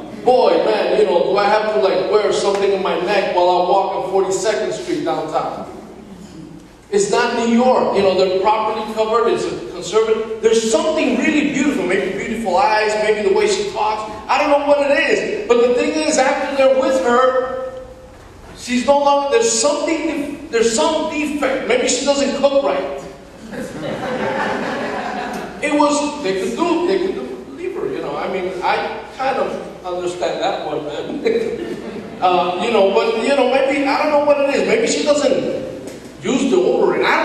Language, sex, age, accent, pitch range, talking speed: English, male, 40-59, American, 215-300 Hz, 180 wpm